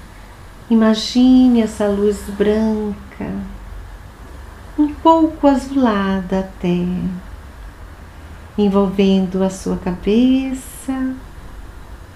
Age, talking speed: 40-59, 60 wpm